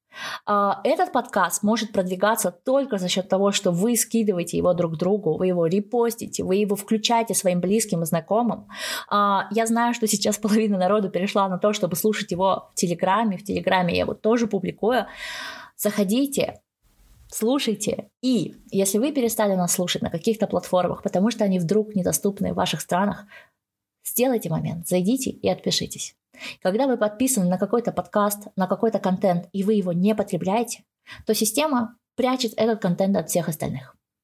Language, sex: Russian, female